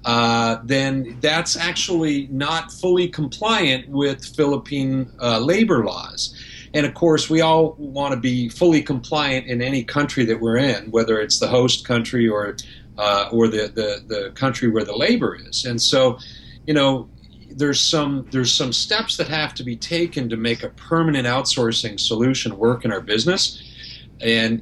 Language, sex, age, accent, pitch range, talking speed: English, male, 50-69, American, 120-150 Hz, 165 wpm